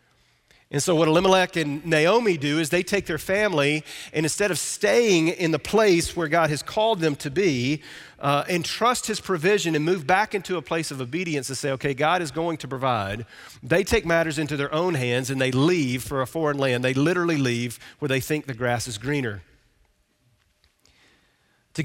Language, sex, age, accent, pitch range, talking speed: English, male, 40-59, American, 135-175 Hz, 195 wpm